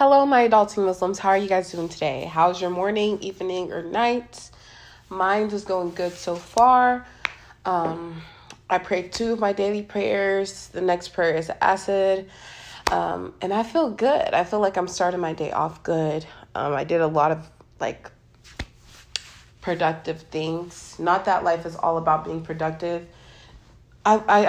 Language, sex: English, female